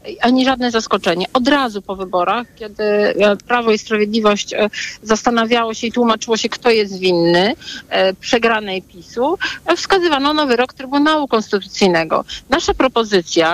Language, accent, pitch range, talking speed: Polish, native, 205-245 Hz, 125 wpm